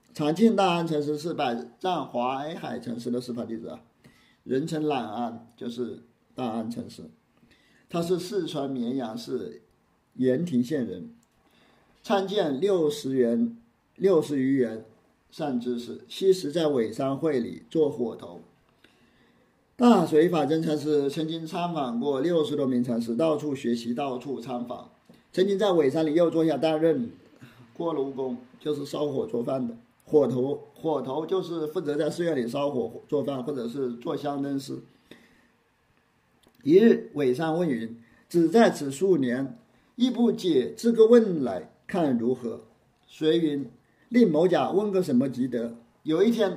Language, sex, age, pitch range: Chinese, male, 50-69, 125-170 Hz